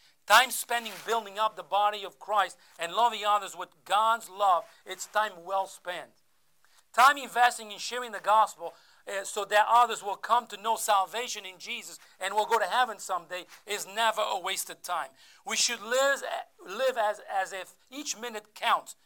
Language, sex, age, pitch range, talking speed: English, male, 50-69, 170-220 Hz, 180 wpm